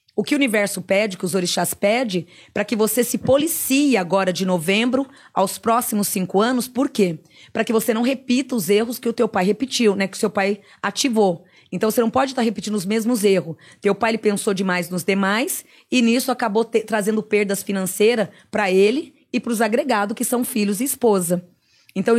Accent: Brazilian